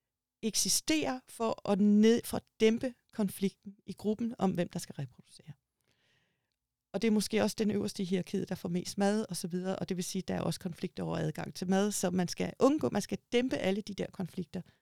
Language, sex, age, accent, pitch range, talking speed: Danish, female, 40-59, native, 170-215 Hz, 215 wpm